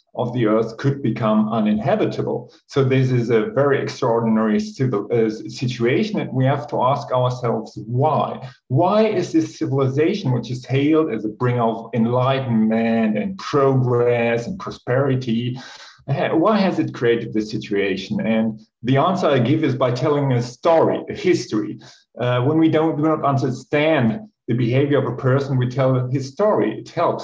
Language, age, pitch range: English, 50-69, 120-145 Hz